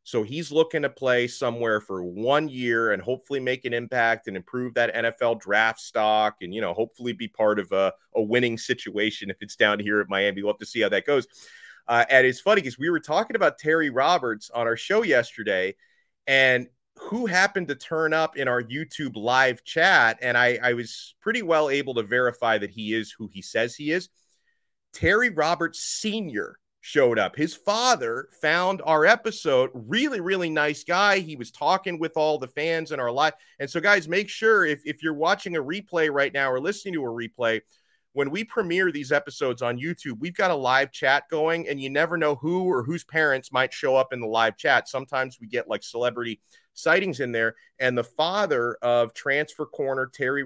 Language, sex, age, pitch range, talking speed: English, male, 30-49, 120-165 Hz, 205 wpm